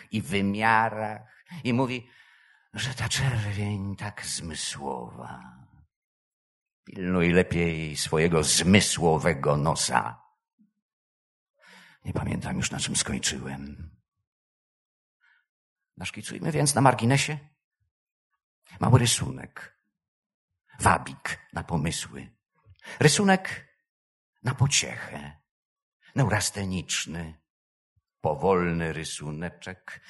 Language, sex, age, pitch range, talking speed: Polish, male, 50-69, 90-145 Hz, 70 wpm